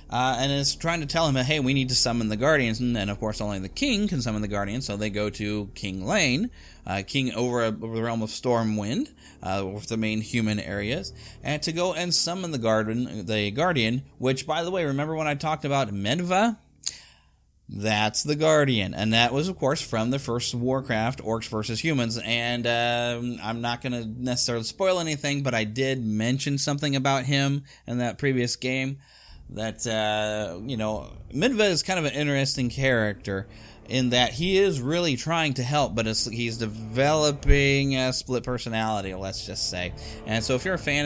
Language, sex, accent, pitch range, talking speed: English, male, American, 110-140 Hz, 195 wpm